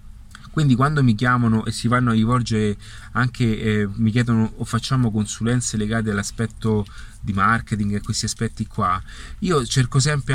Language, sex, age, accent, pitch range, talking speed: Italian, male, 30-49, native, 105-130 Hz, 155 wpm